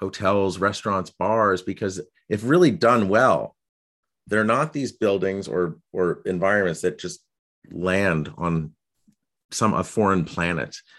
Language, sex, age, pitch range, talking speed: English, male, 30-49, 90-115 Hz, 125 wpm